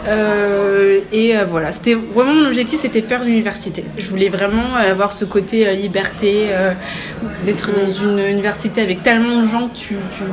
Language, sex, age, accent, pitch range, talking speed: French, female, 20-39, French, 200-235 Hz, 180 wpm